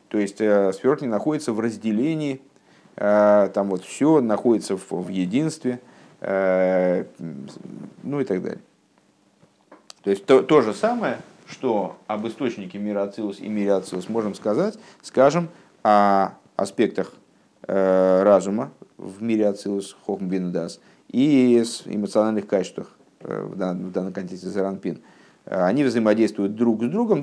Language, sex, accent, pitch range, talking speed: Russian, male, native, 100-130 Hz, 115 wpm